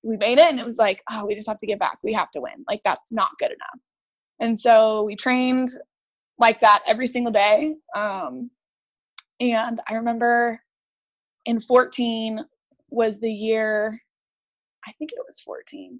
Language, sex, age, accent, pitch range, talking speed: English, female, 20-39, American, 220-255 Hz, 175 wpm